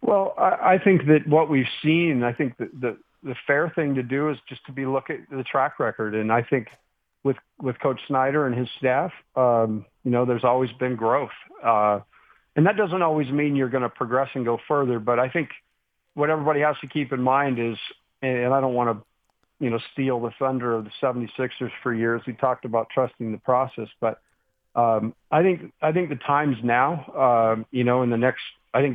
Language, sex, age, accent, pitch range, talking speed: English, male, 50-69, American, 120-140 Hz, 220 wpm